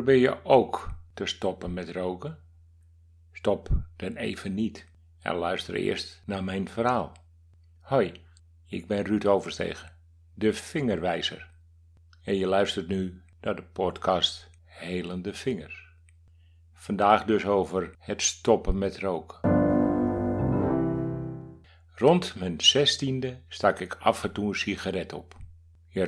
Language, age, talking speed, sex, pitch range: Dutch, 60-79, 120 wpm, male, 85-100 Hz